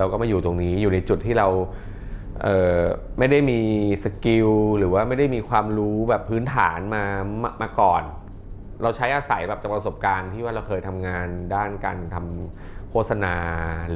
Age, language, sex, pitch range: 20-39, Thai, male, 95-105 Hz